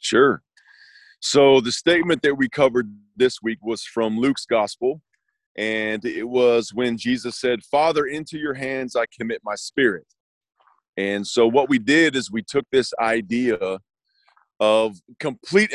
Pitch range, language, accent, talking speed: 115-150 Hz, English, American, 150 wpm